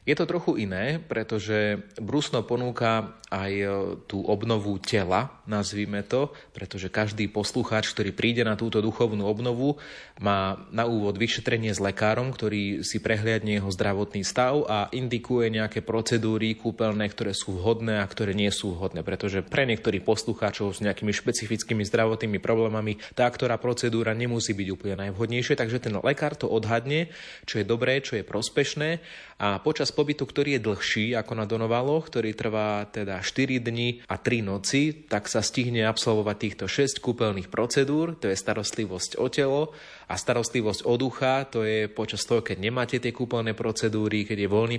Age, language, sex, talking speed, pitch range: 30-49, Slovak, male, 160 wpm, 105-125 Hz